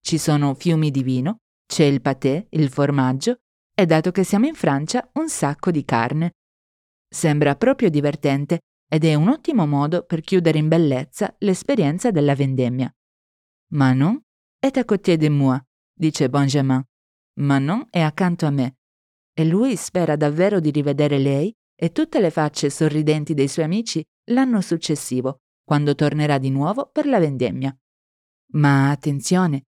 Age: 20-39